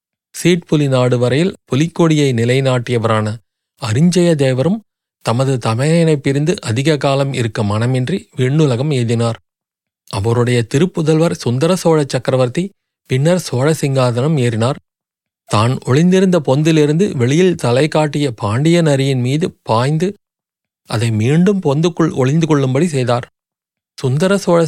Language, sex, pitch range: Tamil, male, 125-160 Hz